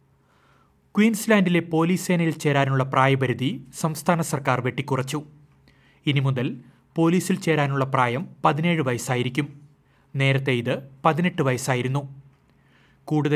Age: 30-49